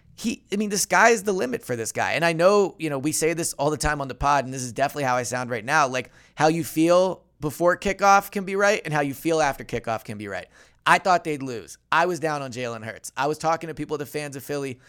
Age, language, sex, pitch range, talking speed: 20-39, English, male, 130-170 Hz, 285 wpm